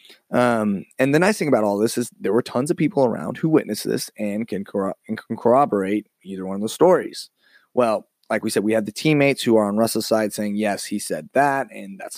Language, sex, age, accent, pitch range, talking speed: English, male, 20-39, American, 100-120 Hz, 240 wpm